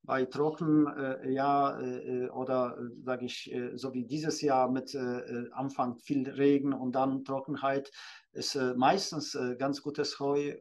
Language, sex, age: German, male, 40-59